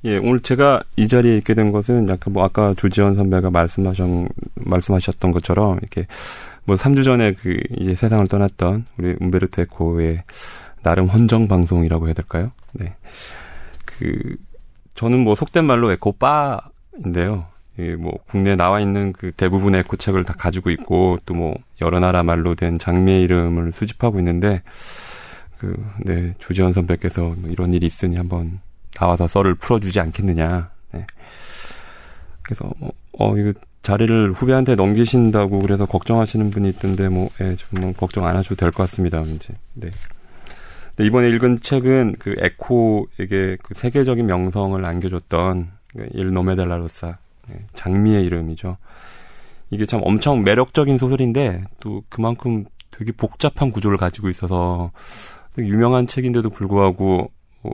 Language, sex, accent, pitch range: Korean, male, native, 90-110 Hz